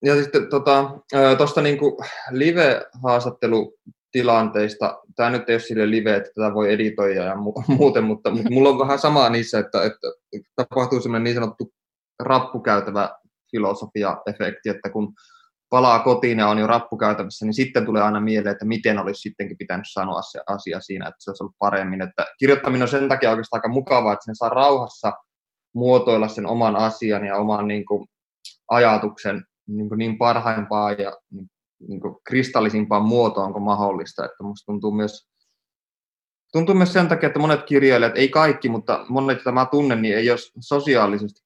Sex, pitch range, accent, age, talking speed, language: male, 105-130 Hz, native, 20-39, 155 wpm, Finnish